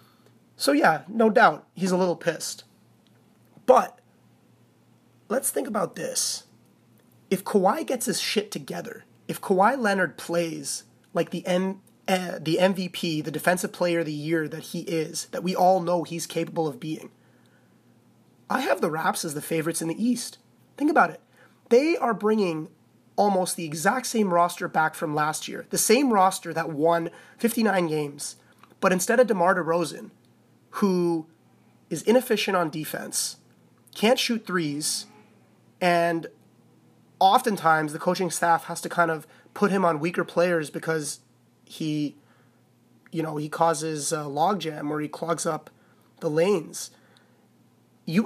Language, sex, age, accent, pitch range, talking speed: English, male, 30-49, American, 160-195 Hz, 145 wpm